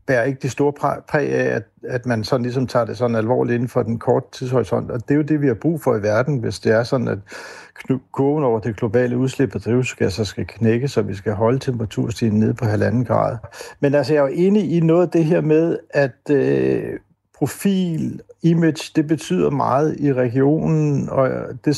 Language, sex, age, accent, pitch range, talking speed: Danish, male, 60-79, native, 115-140 Hz, 210 wpm